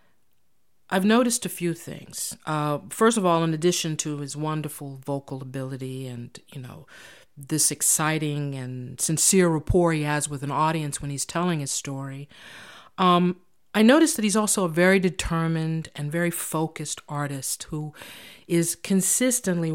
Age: 50-69